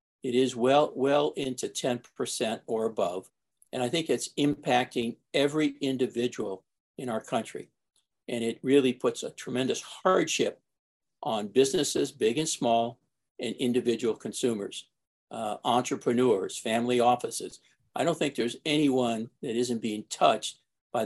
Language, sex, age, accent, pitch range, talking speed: English, male, 60-79, American, 115-135 Hz, 135 wpm